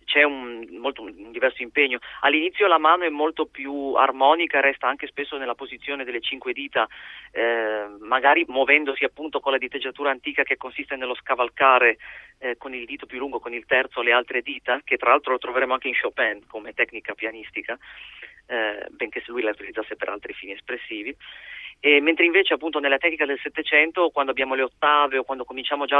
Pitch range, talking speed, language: 130-155 Hz, 185 wpm, Italian